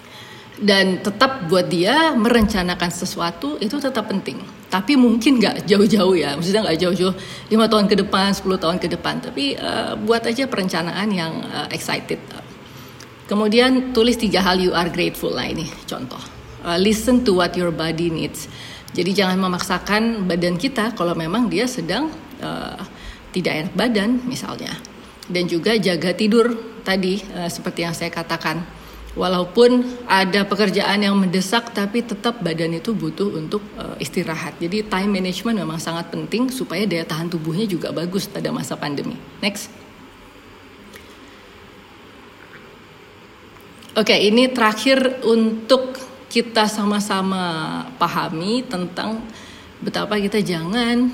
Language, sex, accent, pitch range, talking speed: English, female, Indonesian, 175-225 Hz, 135 wpm